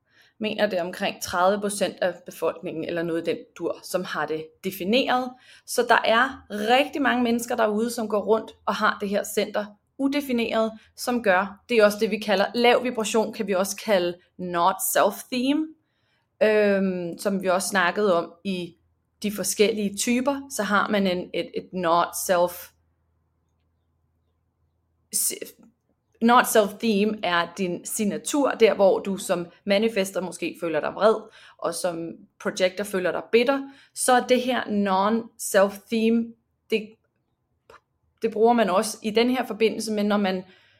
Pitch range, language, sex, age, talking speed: 180-225 Hz, Danish, female, 30-49, 150 wpm